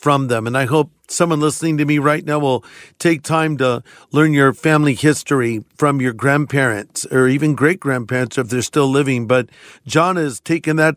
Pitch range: 130-150 Hz